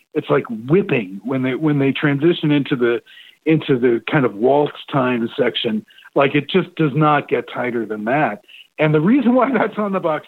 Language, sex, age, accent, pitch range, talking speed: English, male, 50-69, American, 140-195 Hz, 200 wpm